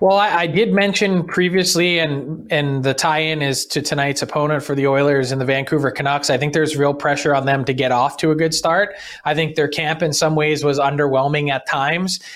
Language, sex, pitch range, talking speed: English, male, 140-165 Hz, 225 wpm